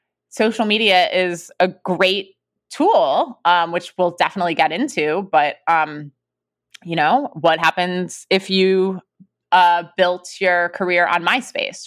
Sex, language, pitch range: female, English, 160-200 Hz